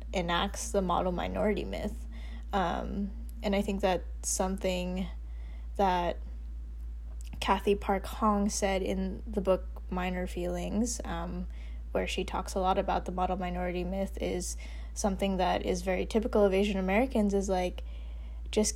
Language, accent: English, American